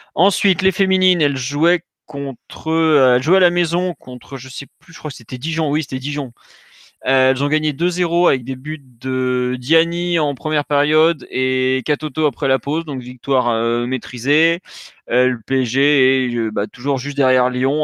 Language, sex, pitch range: French, male, 125-160 Hz